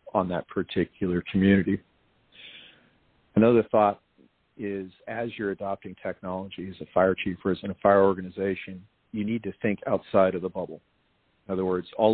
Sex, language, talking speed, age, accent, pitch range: male, English, 165 wpm, 50-69, American, 90-100 Hz